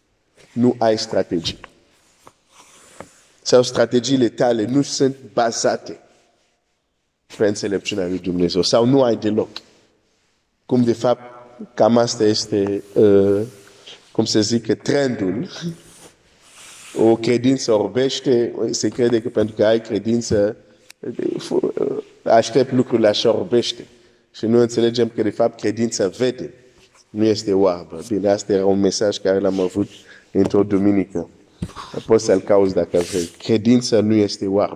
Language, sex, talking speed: Romanian, male, 125 wpm